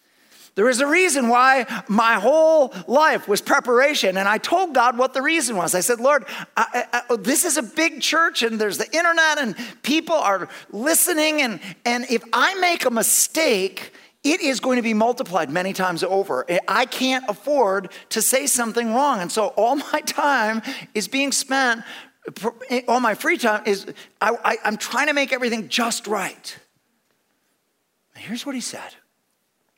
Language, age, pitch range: English, 50-69, 205-275 Hz